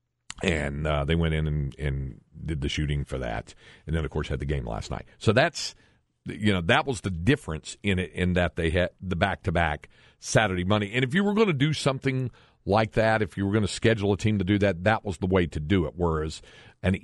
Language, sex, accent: English, male, American